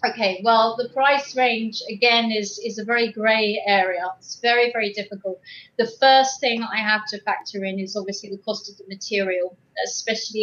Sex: female